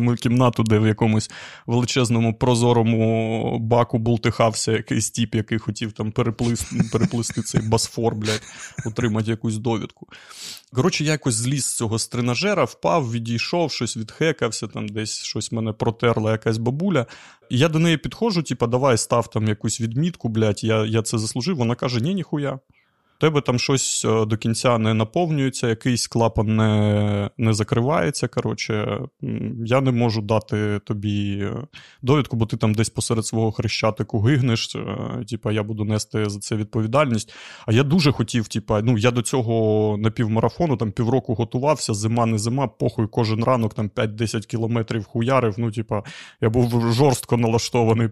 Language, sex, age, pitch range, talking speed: Ukrainian, male, 20-39, 110-125 Hz, 155 wpm